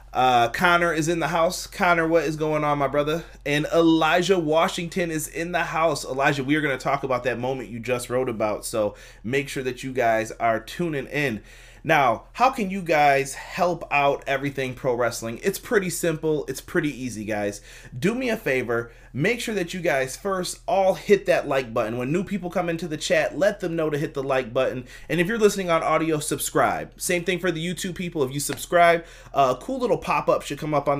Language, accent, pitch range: English, American, 135-175 Hz